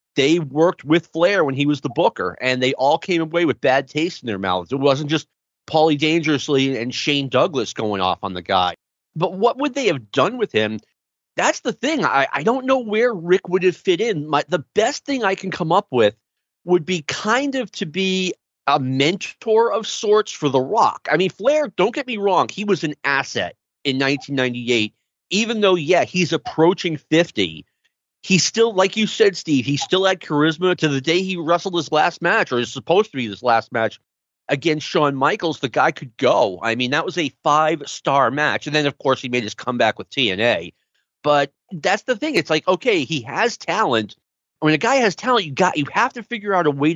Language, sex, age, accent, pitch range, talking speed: English, male, 30-49, American, 140-195 Hz, 220 wpm